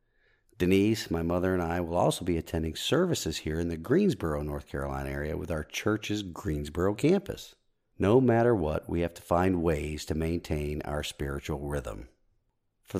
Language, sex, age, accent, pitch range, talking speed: English, male, 50-69, American, 80-100 Hz, 165 wpm